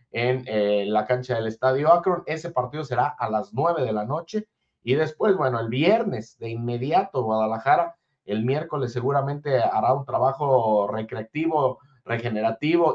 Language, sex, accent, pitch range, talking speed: Spanish, male, Mexican, 120-145 Hz, 150 wpm